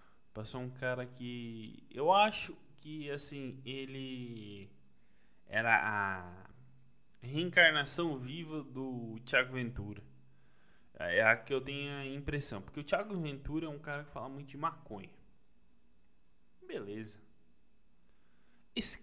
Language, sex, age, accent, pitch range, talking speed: Portuguese, male, 10-29, Brazilian, 100-130 Hz, 115 wpm